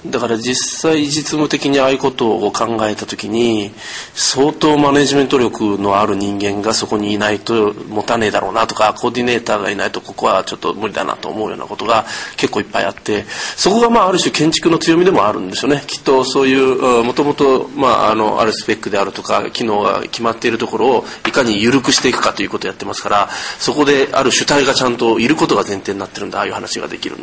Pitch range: 110-155 Hz